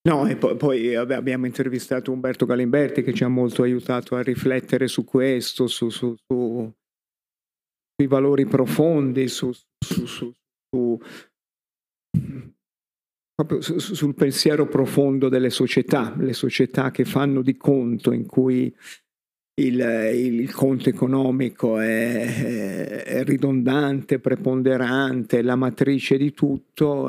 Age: 50-69